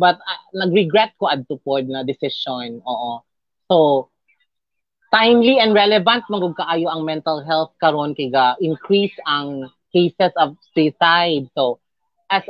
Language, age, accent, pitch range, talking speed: English, 30-49, Filipino, 140-185 Hz, 120 wpm